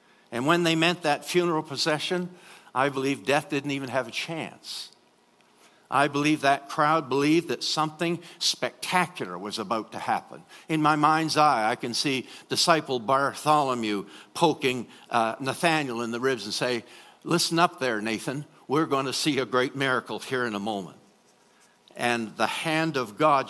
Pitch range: 130-175 Hz